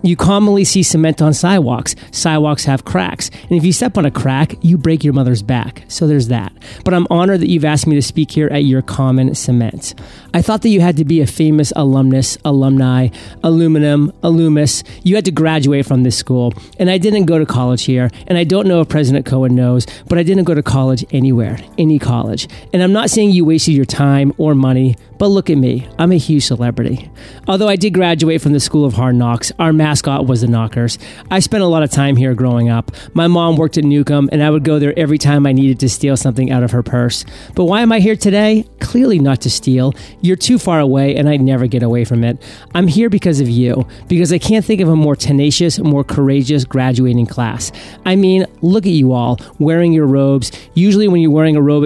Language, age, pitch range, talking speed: English, 40-59, 125-170 Hz, 230 wpm